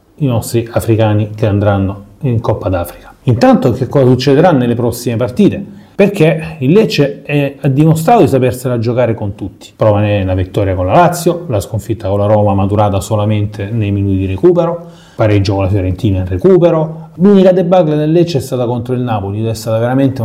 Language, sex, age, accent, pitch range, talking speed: Italian, male, 30-49, native, 105-140 Hz, 180 wpm